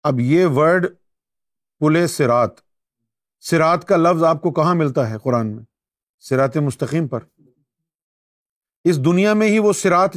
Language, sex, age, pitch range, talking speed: Urdu, male, 50-69, 140-185 Hz, 140 wpm